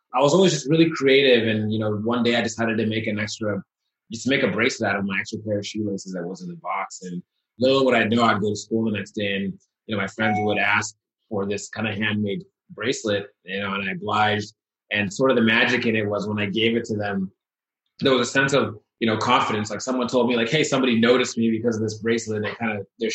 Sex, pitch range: male, 105-120 Hz